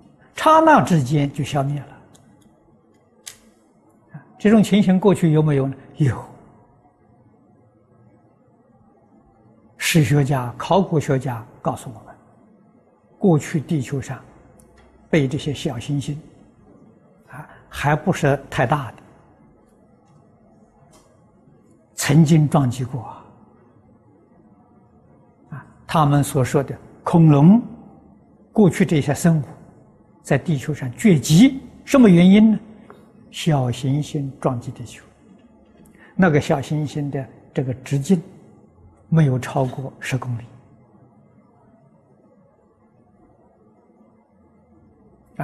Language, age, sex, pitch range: Chinese, 60-79, male, 135-175 Hz